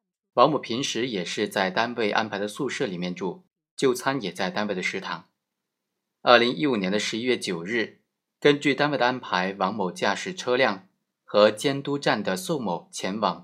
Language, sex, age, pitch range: Chinese, male, 30-49, 95-135 Hz